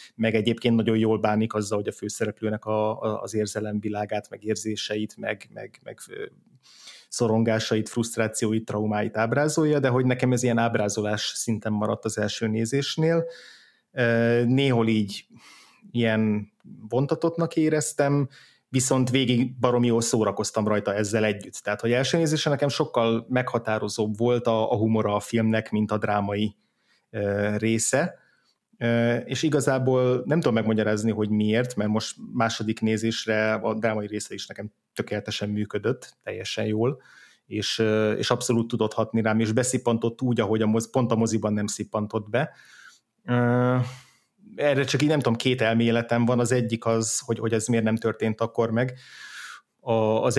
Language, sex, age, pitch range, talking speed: Hungarian, male, 30-49, 110-125 Hz, 145 wpm